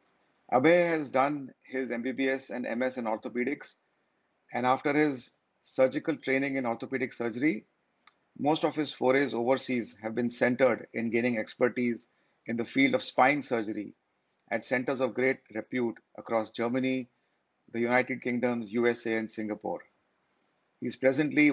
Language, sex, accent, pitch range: English, male, Indian, 120-135 Hz